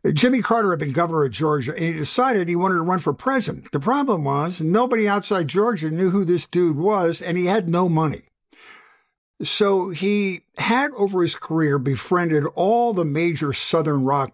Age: 60-79